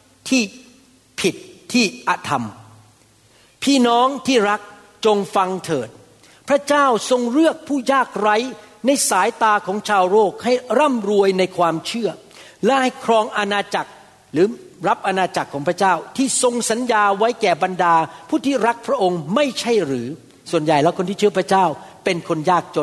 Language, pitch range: Thai, 170-240 Hz